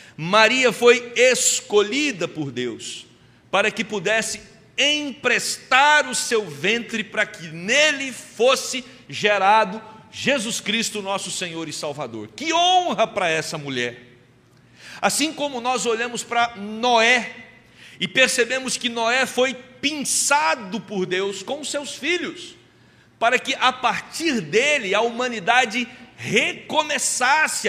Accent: Brazilian